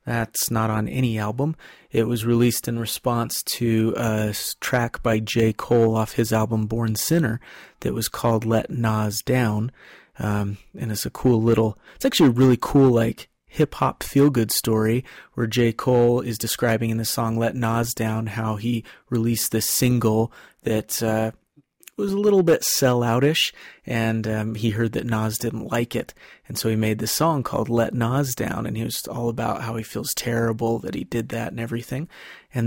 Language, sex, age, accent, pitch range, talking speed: English, male, 30-49, American, 110-130 Hz, 185 wpm